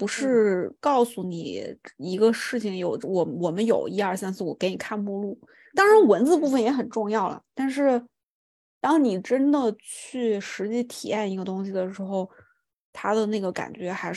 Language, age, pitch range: Chinese, 20-39, 190-245 Hz